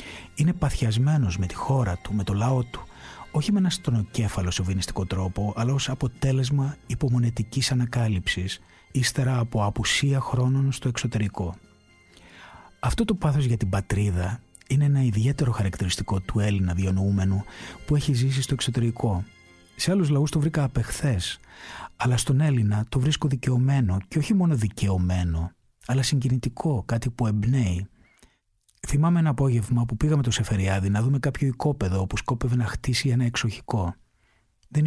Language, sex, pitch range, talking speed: Greek, male, 100-135 Hz, 145 wpm